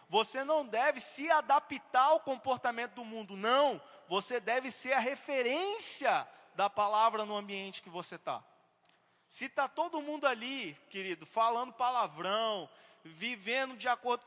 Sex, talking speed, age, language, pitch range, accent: male, 140 wpm, 20-39, Portuguese, 225-290 Hz, Brazilian